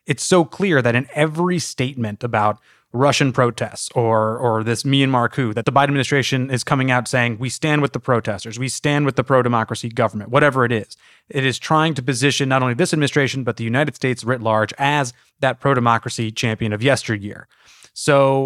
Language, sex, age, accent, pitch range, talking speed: English, male, 30-49, American, 120-150 Hz, 190 wpm